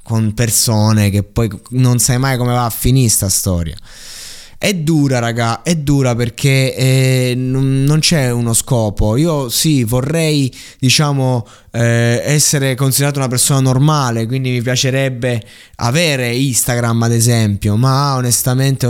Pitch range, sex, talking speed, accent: 105-135 Hz, male, 135 wpm, native